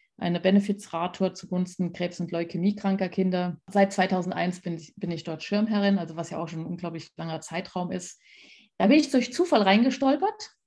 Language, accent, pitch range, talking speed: German, German, 190-235 Hz, 175 wpm